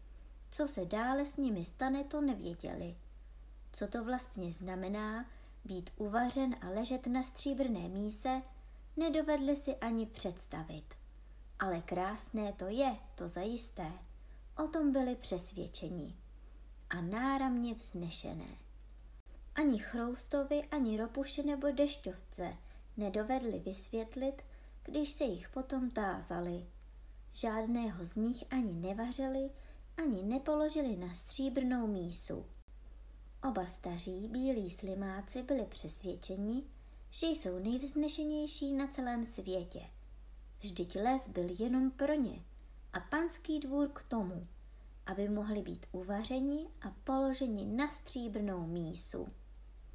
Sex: male